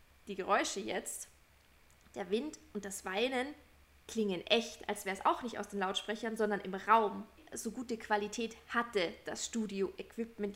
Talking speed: 155 wpm